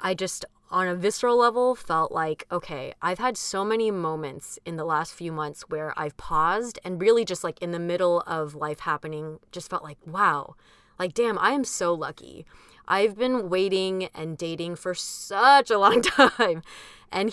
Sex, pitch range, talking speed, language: female, 160-210 Hz, 185 wpm, English